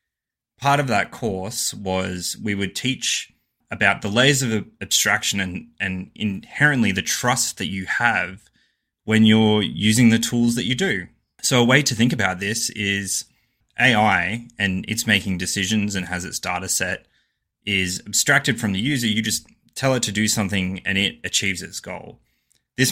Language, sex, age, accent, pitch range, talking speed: English, male, 20-39, Australian, 95-120 Hz, 170 wpm